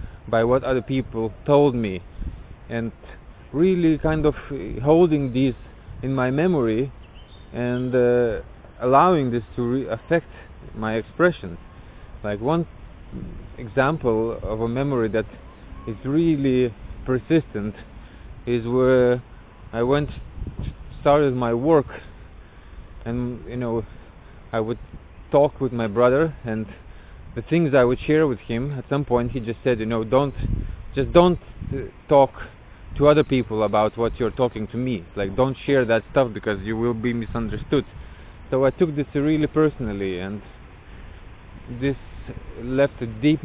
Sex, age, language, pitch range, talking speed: male, 30-49, English, 105-135 Hz, 140 wpm